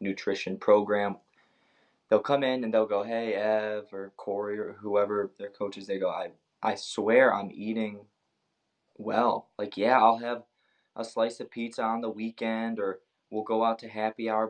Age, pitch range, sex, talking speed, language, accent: 20-39, 105-120 Hz, male, 175 wpm, English, American